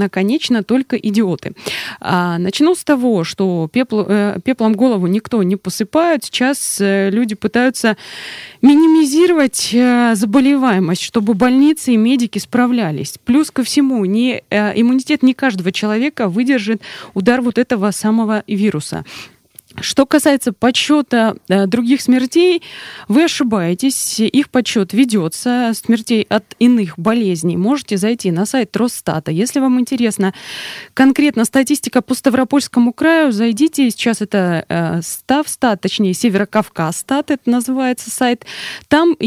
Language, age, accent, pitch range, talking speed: Russian, 20-39, native, 200-260 Hz, 115 wpm